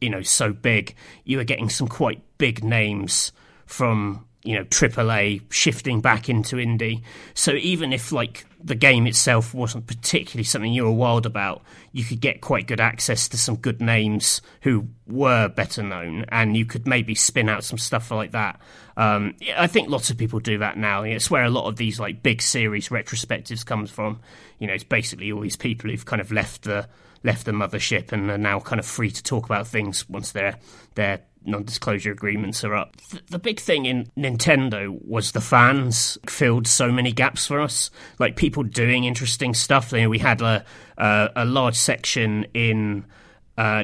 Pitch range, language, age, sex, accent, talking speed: 105-125 Hz, English, 30-49, male, British, 195 wpm